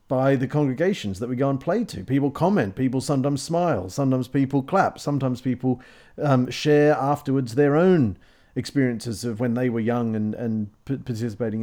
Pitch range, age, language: 115-145 Hz, 40-59, English